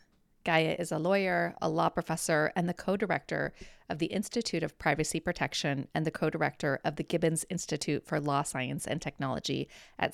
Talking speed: 170 wpm